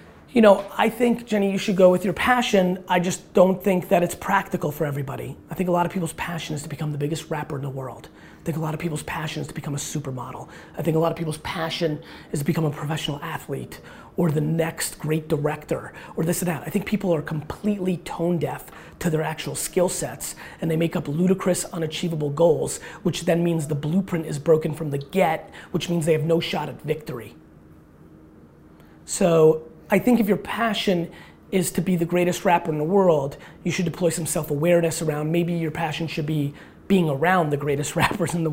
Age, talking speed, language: 30-49, 220 wpm, English